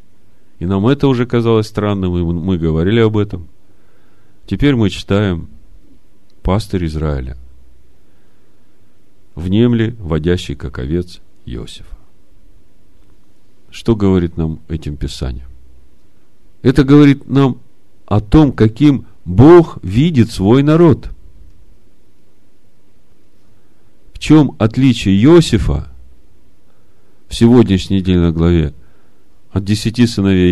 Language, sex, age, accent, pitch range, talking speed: Russian, male, 40-59, native, 85-110 Hz, 95 wpm